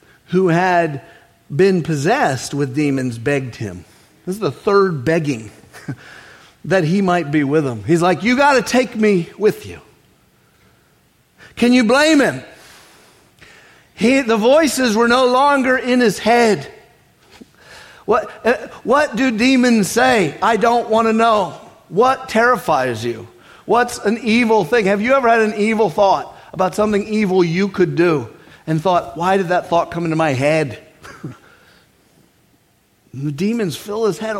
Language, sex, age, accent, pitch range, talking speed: English, male, 50-69, American, 160-230 Hz, 145 wpm